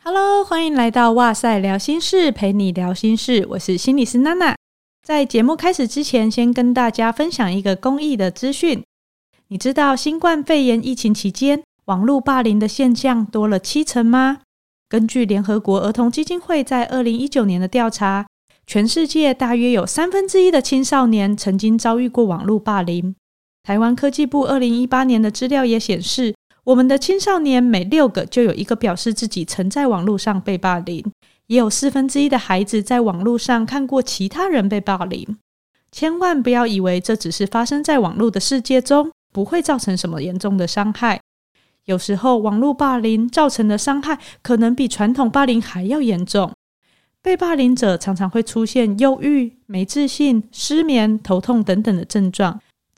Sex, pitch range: female, 210-275 Hz